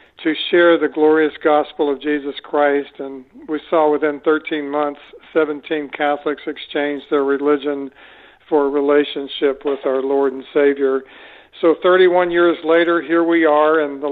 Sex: male